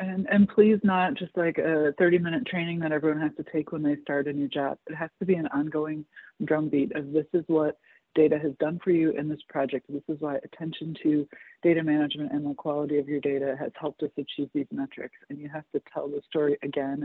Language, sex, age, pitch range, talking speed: English, female, 30-49, 145-180 Hz, 230 wpm